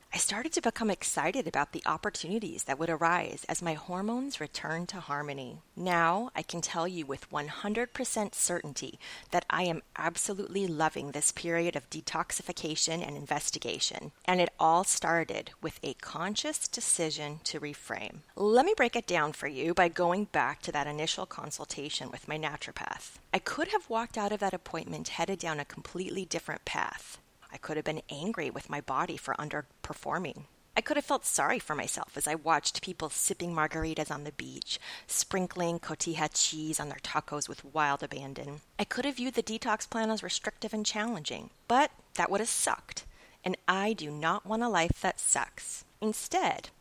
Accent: American